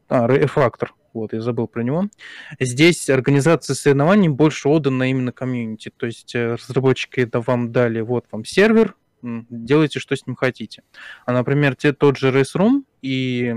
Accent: native